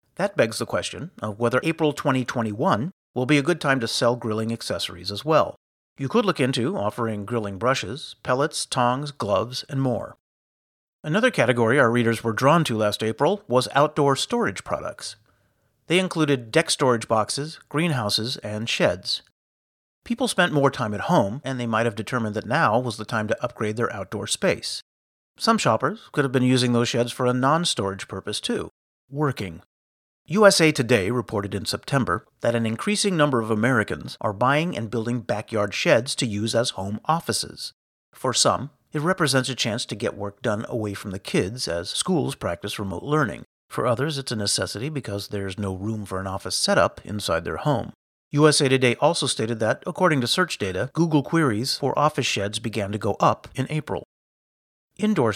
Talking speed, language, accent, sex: 180 wpm, English, American, male